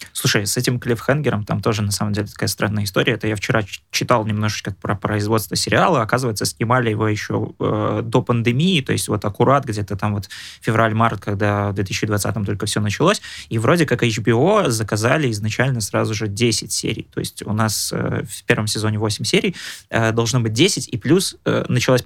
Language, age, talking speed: Russian, 20-39, 190 wpm